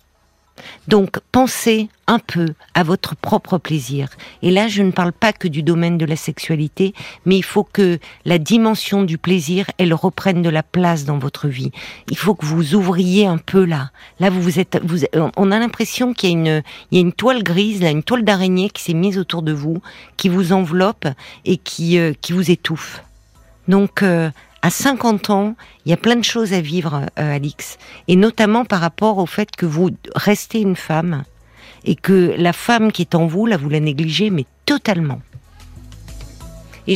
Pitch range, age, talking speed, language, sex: 155-205 Hz, 50-69, 200 wpm, French, female